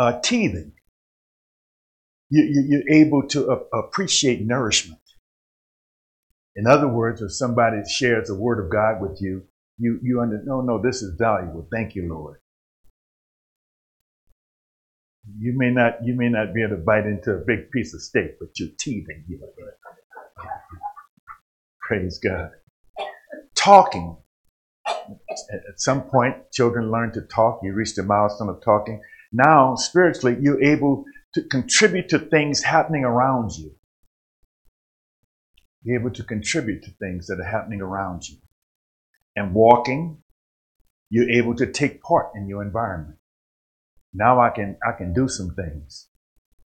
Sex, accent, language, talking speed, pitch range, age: male, American, English, 140 wpm, 90-125 Hz, 50-69